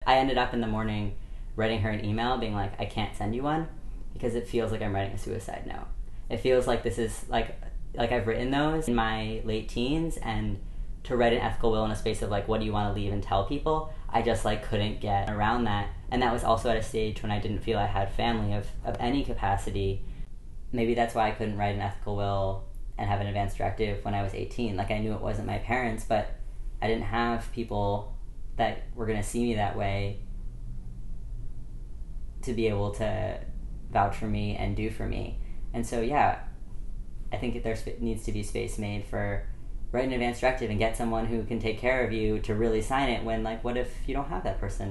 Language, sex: English, female